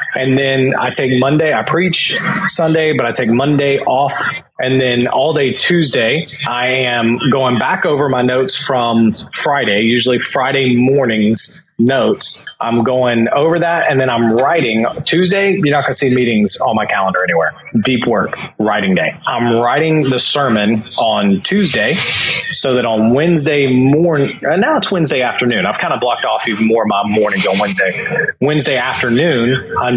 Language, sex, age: English, male, 30-49